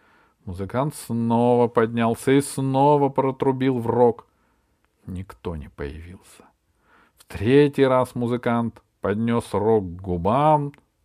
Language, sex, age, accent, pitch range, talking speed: Russian, male, 50-69, native, 100-145 Hz, 105 wpm